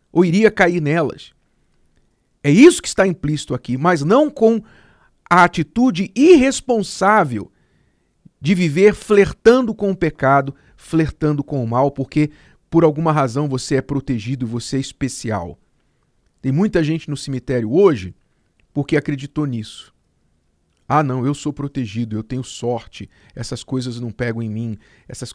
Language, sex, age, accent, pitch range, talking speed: Portuguese, male, 50-69, Brazilian, 120-165 Hz, 140 wpm